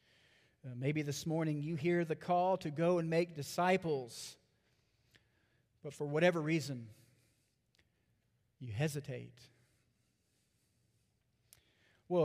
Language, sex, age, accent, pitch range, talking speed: English, male, 40-59, American, 120-170 Hz, 95 wpm